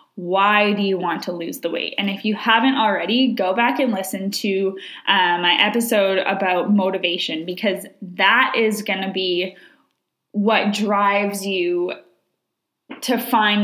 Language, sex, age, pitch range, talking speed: English, female, 20-39, 195-245 Hz, 150 wpm